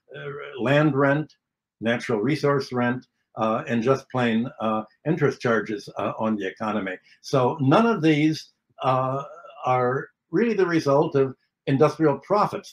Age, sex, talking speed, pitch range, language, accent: 60-79, male, 135 wpm, 120-150 Hz, English, American